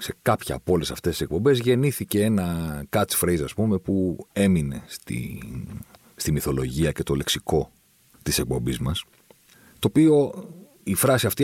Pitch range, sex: 80-120 Hz, male